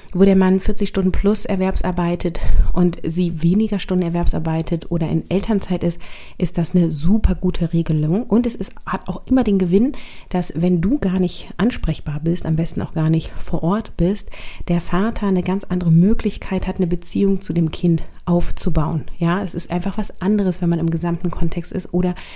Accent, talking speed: German, 190 wpm